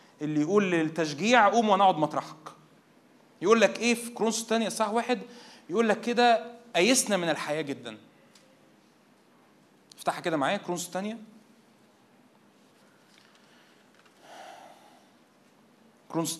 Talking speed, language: 100 wpm, Arabic